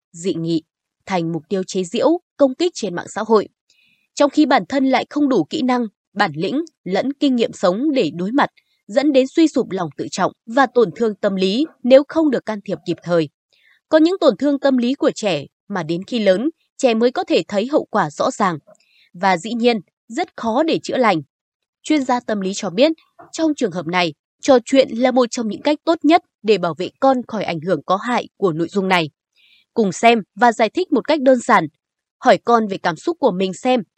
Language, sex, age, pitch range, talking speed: Vietnamese, female, 20-39, 190-280 Hz, 225 wpm